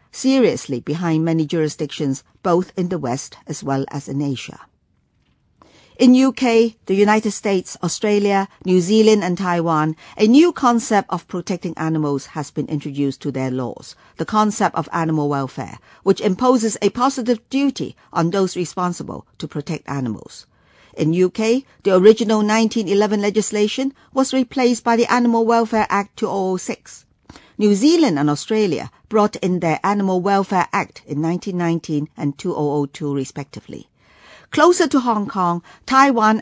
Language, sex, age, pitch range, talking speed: English, female, 50-69, 155-225 Hz, 140 wpm